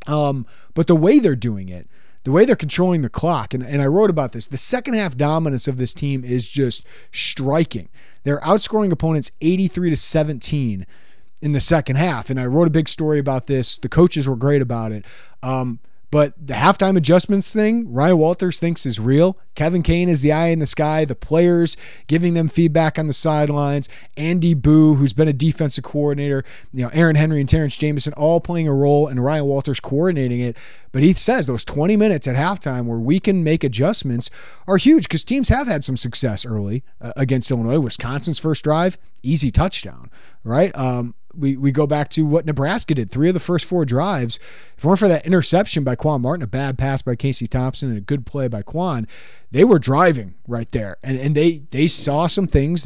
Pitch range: 130-170 Hz